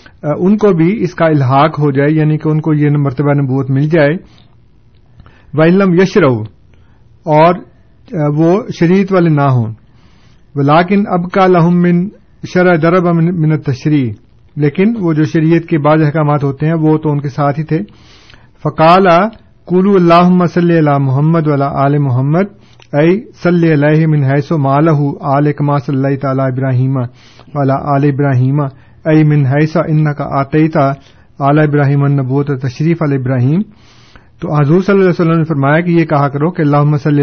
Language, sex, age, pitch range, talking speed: Urdu, male, 50-69, 140-165 Hz, 150 wpm